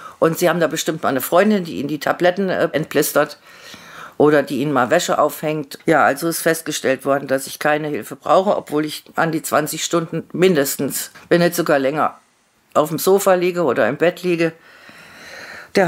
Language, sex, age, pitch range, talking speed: German, female, 50-69, 160-185 Hz, 185 wpm